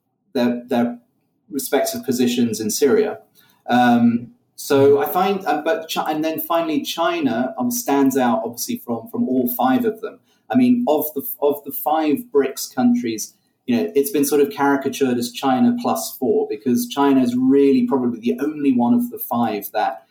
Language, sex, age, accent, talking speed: English, male, 30-49, British, 175 wpm